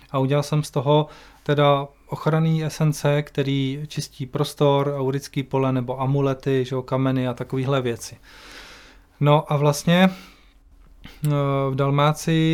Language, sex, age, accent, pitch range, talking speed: Czech, male, 20-39, native, 135-150 Hz, 115 wpm